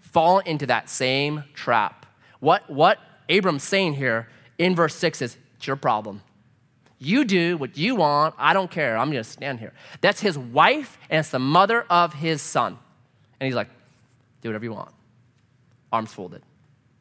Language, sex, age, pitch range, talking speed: English, male, 30-49, 125-170 Hz, 175 wpm